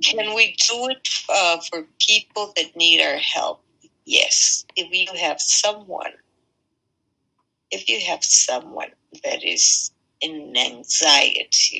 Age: 60-79